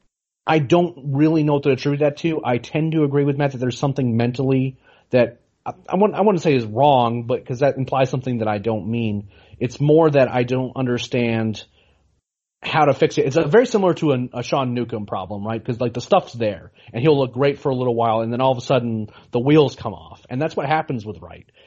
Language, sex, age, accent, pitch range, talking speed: English, male, 30-49, American, 115-145 Hz, 240 wpm